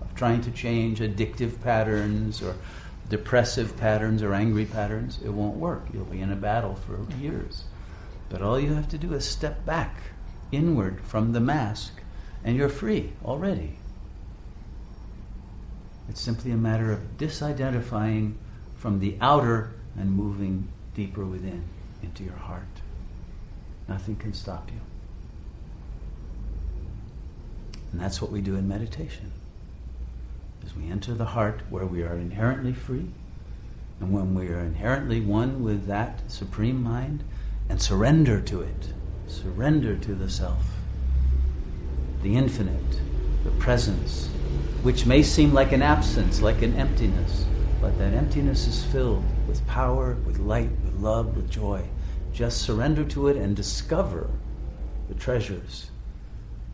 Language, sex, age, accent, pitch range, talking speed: English, male, 50-69, American, 75-110 Hz, 135 wpm